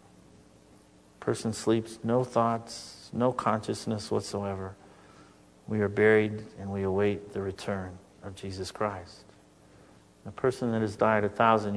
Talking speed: 130 wpm